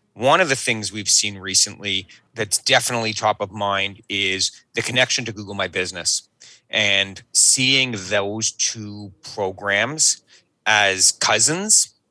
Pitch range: 100-125 Hz